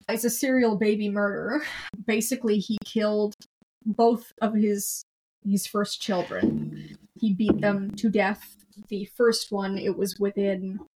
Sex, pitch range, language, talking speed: female, 195-215 Hz, English, 135 wpm